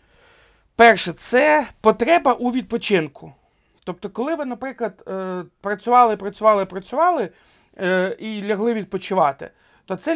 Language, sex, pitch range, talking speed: Russian, male, 185-235 Hz, 100 wpm